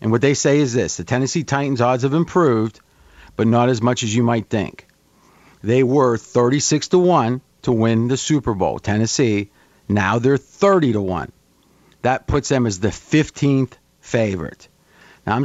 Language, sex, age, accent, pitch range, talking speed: English, male, 40-59, American, 115-150 Hz, 175 wpm